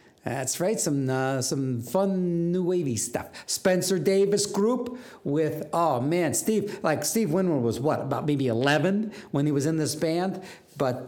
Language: English